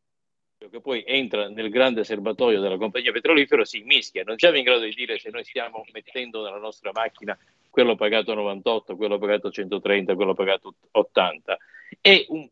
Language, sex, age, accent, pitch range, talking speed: Italian, male, 50-69, native, 110-170 Hz, 170 wpm